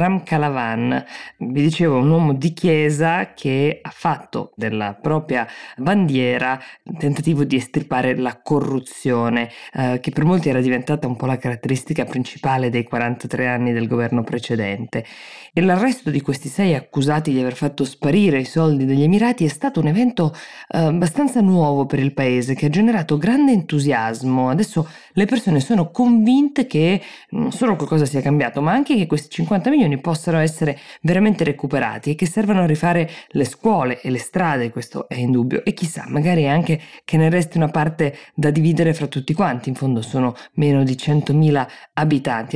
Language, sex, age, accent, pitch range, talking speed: Italian, female, 20-39, native, 130-170 Hz, 170 wpm